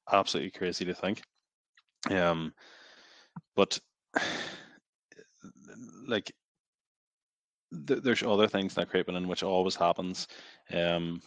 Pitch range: 80-85 Hz